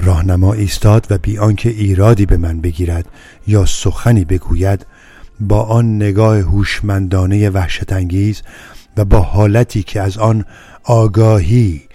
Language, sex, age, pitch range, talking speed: Persian, male, 50-69, 95-115 Hz, 130 wpm